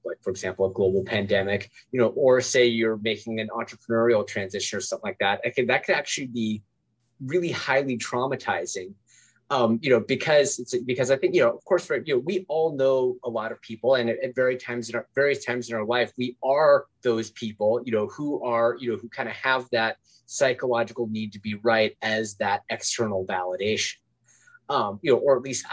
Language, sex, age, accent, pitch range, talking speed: English, male, 20-39, American, 115-150 Hz, 215 wpm